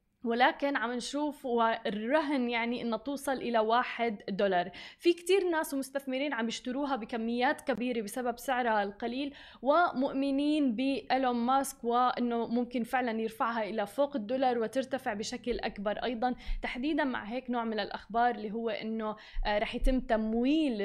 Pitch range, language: 230-275 Hz, Arabic